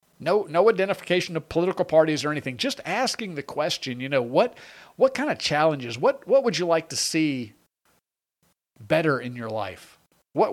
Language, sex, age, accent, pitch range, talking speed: English, male, 50-69, American, 130-175 Hz, 175 wpm